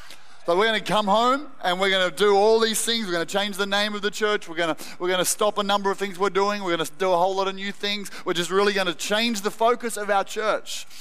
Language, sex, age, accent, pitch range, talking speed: English, male, 30-49, Australian, 195-225 Hz, 310 wpm